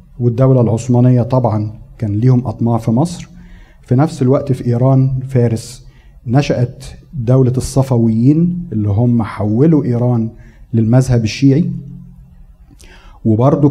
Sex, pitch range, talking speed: male, 115-140 Hz, 105 wpm